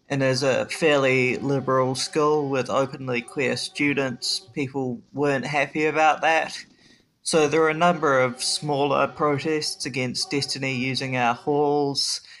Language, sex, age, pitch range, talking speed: English, male, 20-39, 125-145 Hz, 135 wpm